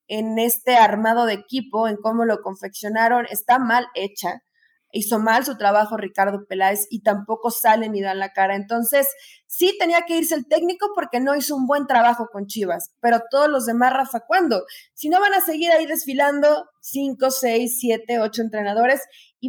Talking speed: 180 wpm